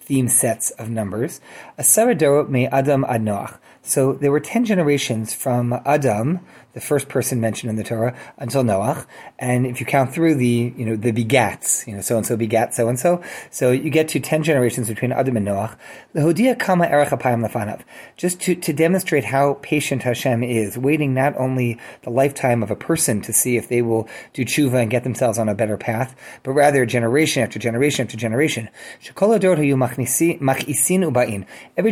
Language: English